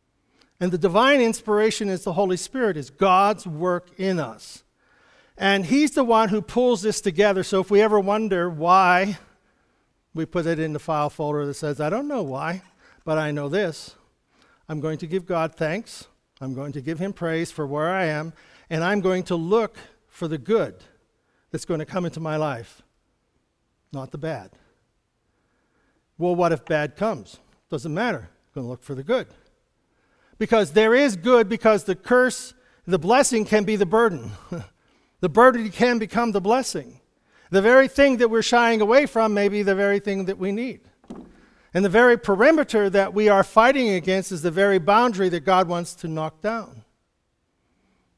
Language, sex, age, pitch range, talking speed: English, male, 60-79, 160-225 Hz, 180 wpm